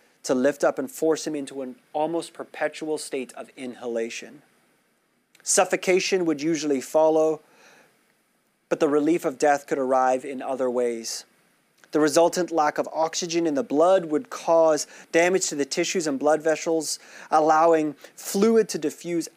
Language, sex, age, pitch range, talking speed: English, male, 30-49, 145-180 Hz, 150 wpm